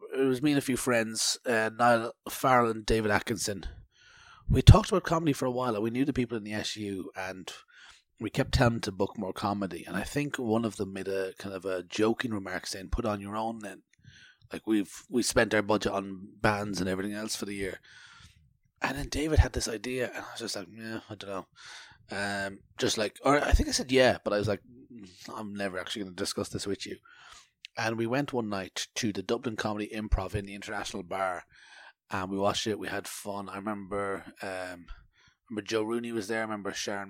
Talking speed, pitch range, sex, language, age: 225 wpm, 100-115 Hz, male, English, 30-49